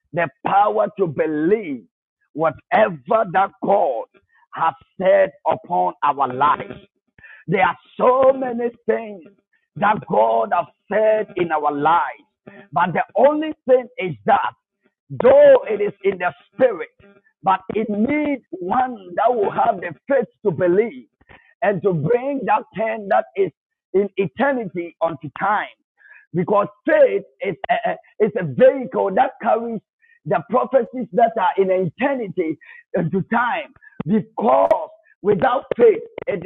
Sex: male